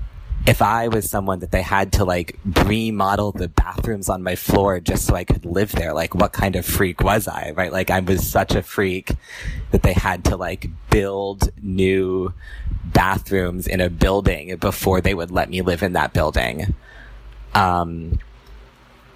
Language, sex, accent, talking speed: English, male, American, 175 wpm